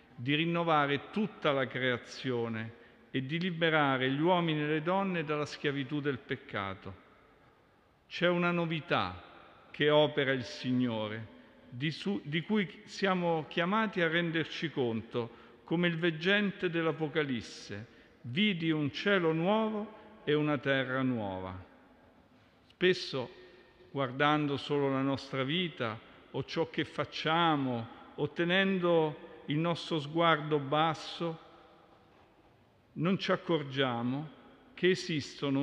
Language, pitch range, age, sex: Italian, 130-170 Hz, 50-69, male